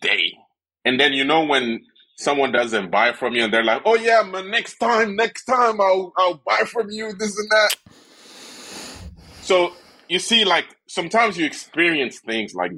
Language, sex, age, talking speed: English, male, 30-49, 180 wpm